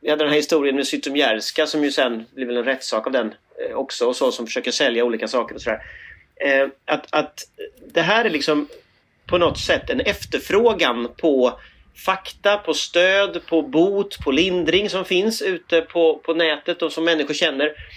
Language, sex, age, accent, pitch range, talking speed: English, male, 30-49, Swedish, 140-210 Hz, 185 wpm